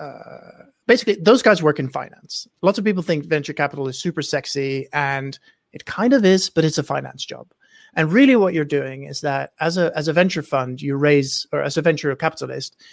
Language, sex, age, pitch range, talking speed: English, male, 30-49, 135-175 Hz, 215 wpm